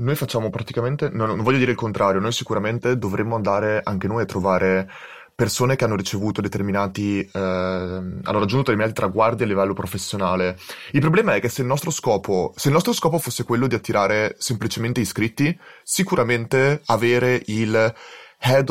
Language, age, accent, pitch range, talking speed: Italian, 20-39, native, 105-130 Hz, 165 wpm